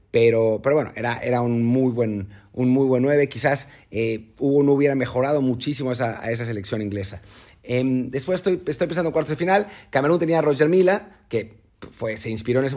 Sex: male